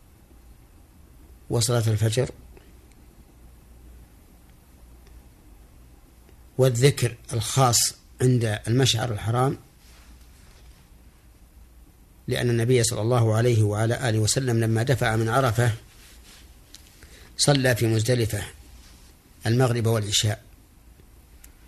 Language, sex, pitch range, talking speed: Arabic, male, 75-120 Hz, 65 wpm